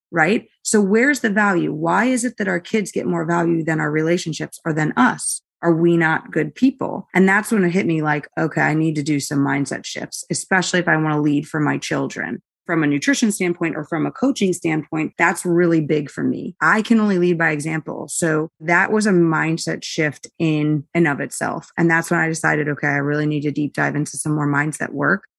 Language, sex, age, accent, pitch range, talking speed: English, female, 20-39, American, 150-175 Hz, 225 wpm